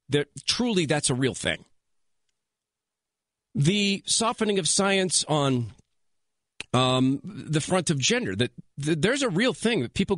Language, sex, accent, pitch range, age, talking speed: English, male, American, 130-195 Hz, 40-59, 140 wpm